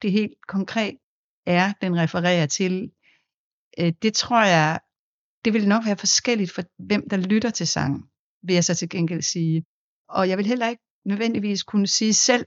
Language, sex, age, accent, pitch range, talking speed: Danish, female, 60-79, native, 170-225 Hz, 175 wpm